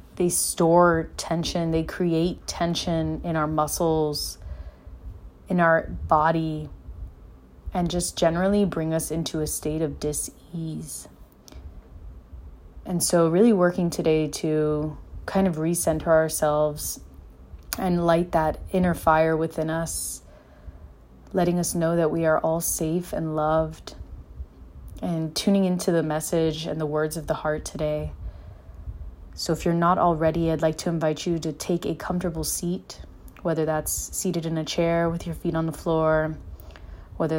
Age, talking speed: 30-49, 145 wpm